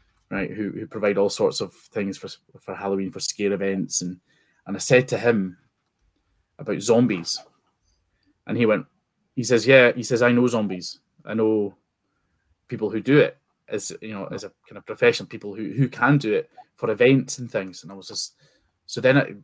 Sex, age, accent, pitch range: male, 20-39, British, 100-130 Hz